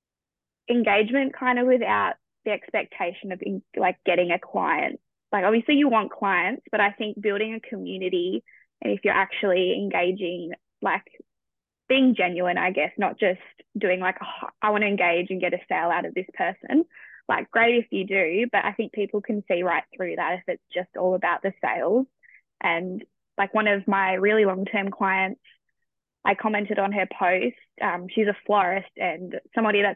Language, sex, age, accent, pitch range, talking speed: English, female, 10-29, Australian, 195-245 Hz, 180 wpm